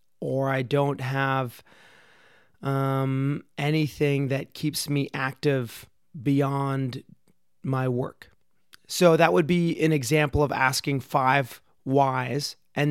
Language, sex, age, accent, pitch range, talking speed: English, male, 30-49, American, 130-145 Hz, 110 wpm